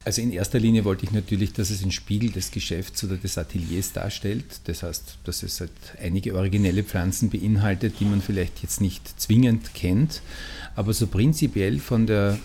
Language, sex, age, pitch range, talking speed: German, male, 50-69, 95-110 Hz, 185 wpm